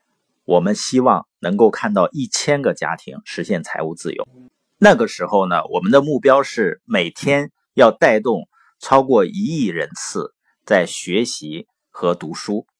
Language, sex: Chinese, male